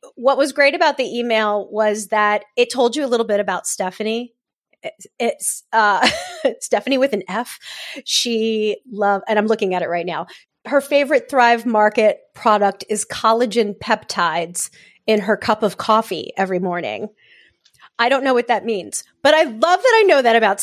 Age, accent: 30-49, American